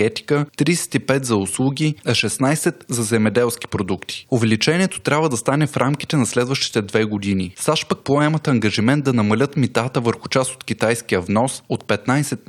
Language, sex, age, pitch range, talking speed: Bulgarian, male, 20-39, 110-140 Hz, 160 wpm